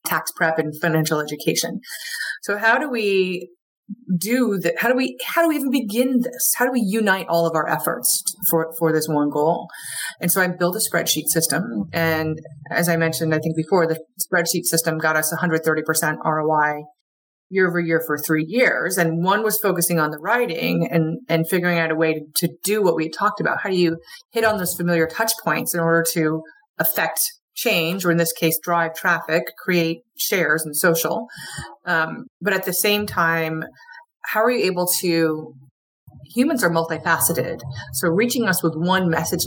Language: English